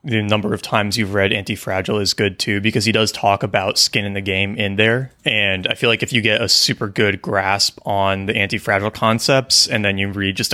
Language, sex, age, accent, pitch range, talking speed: English, male, 20-39, American, 100-115 Hz, 235 wpm